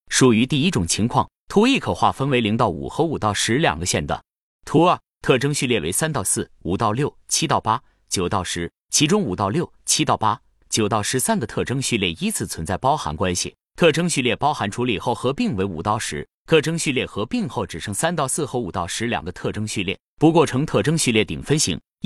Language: Chinese